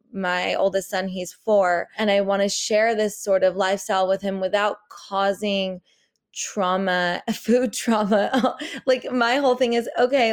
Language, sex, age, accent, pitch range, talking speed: English, female, 20-39, American, 190-230 Hz, 155 wpm